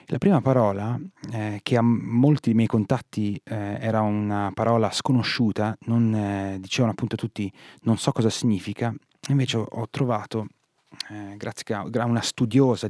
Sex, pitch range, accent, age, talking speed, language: male, 100-125 Hz, native, 30-49, 150 wpm, Italian